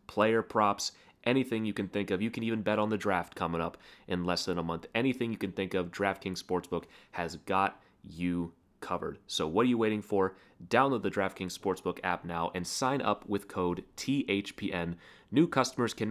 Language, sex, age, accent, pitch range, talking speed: English, male, 30-49, American, 95-120 Hz, 195 wpm